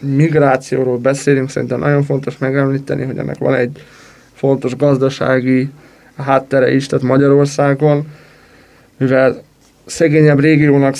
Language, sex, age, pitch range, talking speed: Hungarian, male, 20-39, 135-150 Hz, 105 wpm